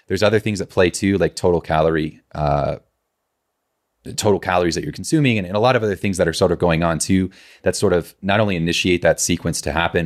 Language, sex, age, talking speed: English, male, 30-49, 240 wpm